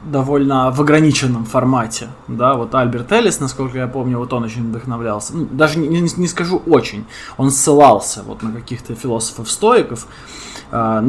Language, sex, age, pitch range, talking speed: Russian, male, 20-39, 115-140 Hz, 150 wpm